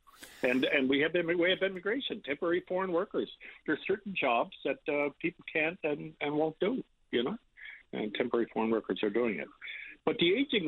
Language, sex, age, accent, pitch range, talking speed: English, male, 60-79, American, 125-185 Hz, 190 wpm